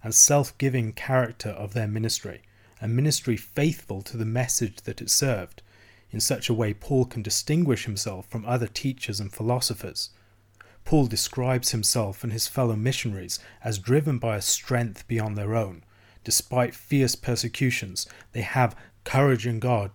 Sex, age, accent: male, 30-49, British